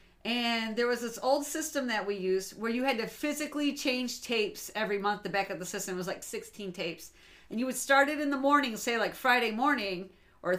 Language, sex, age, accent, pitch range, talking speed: English, female, 40-59, American, 200-260 Hz, 225 wpm